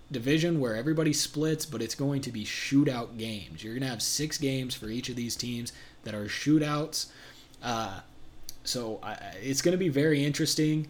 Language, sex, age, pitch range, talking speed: English, male, 20-39, 105-135 Hz, 180 wpm